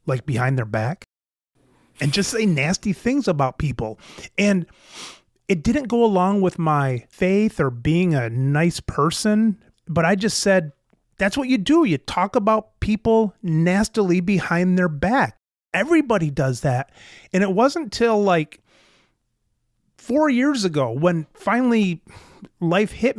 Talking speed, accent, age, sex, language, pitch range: 140 wpm, American, 30-49, male, English, 145-210 Hz